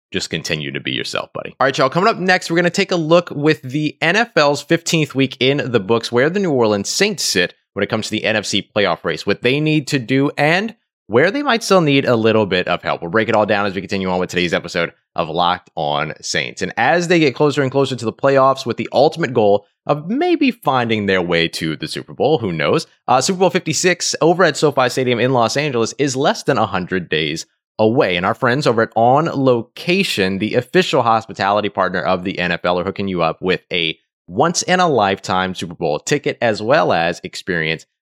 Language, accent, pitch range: English, American, 95-155 Hz